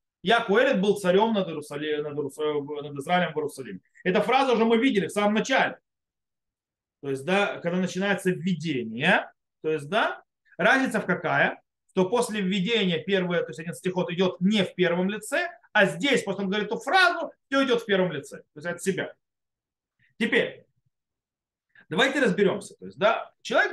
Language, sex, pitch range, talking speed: Russian, male, 180-245 Hz, 170 wpm